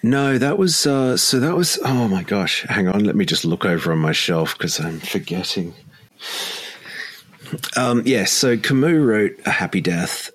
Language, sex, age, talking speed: English, male, 40-59, 180 wpm